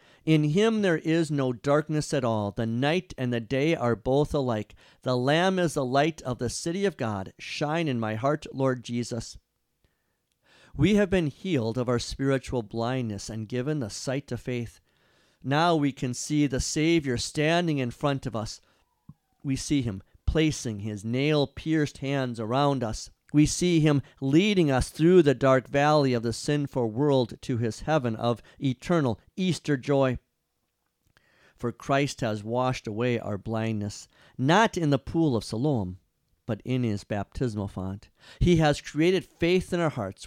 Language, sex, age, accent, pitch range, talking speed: English, male, 50-69, American, 115-150 Hz, 165 wpm